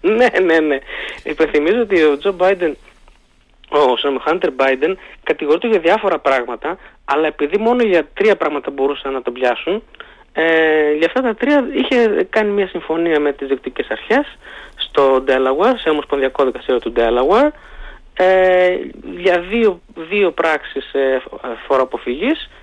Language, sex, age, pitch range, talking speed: Greek, male, 20-39, 150-250 Hz, 135 wpm